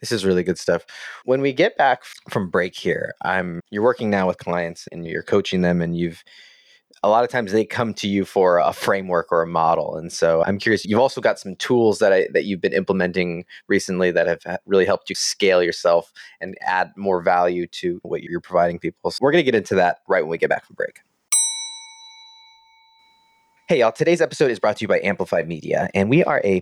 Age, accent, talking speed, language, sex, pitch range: 20-39, American, 220 wpm, English, male, 90-145 Hz